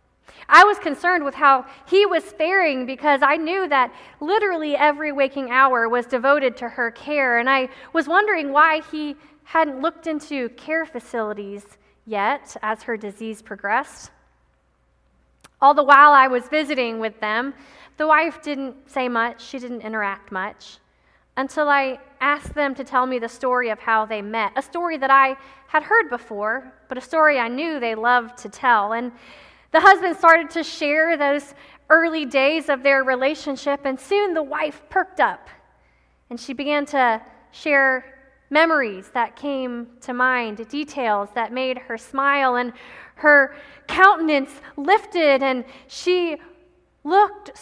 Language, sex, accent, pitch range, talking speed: English, female, American, 245-310 Hz, 160 wpm